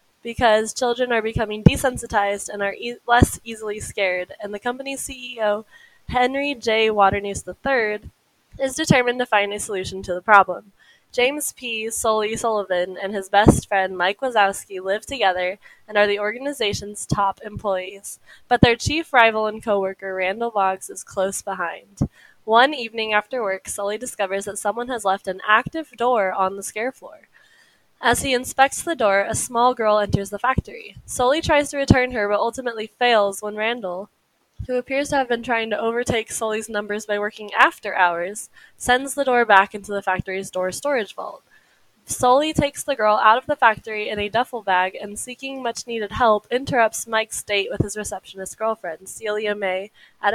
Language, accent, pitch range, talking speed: English, American, 200-245 Hz, 175 wpm